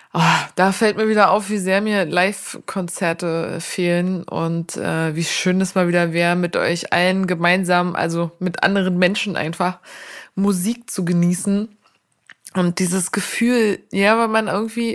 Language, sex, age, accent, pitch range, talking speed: German, female, 20-39, German, 170-205 Hz, 155 wpm